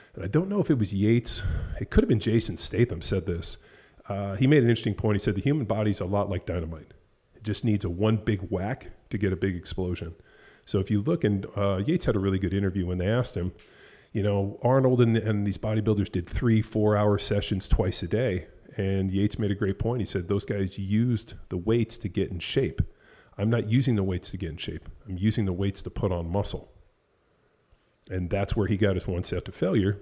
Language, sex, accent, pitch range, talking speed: English, male, American, 95-110 Hz, 235 wpm